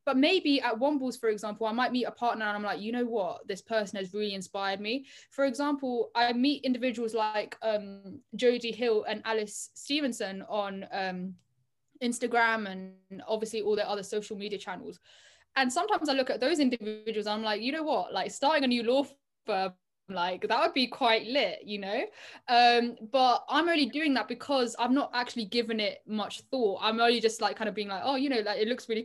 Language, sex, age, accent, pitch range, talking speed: English, female, 10-29, British, 210-255 Hz, 210 wpm